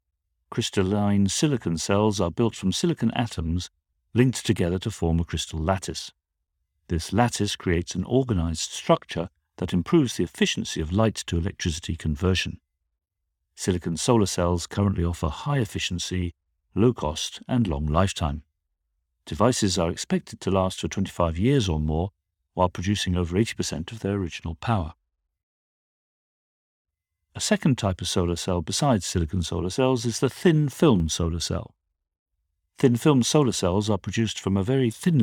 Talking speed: 145 wpm